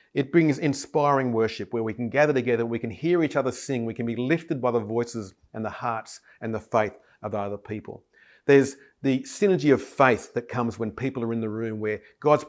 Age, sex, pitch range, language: 40-59, male, 110-135 Hz, English